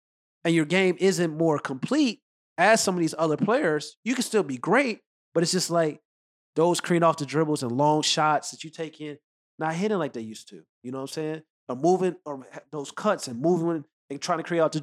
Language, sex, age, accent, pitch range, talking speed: English, male, 30-49, American, 130-165 Hz, 230 wpm